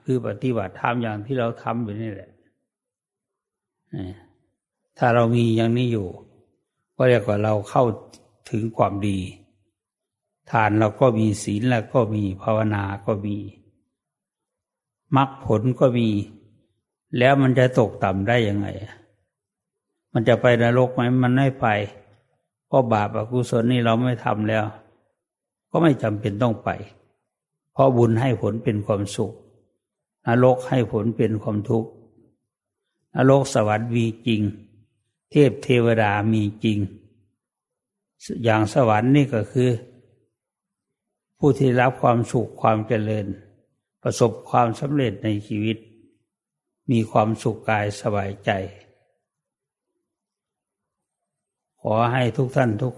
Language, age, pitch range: English, 60-79, 105-125 Hz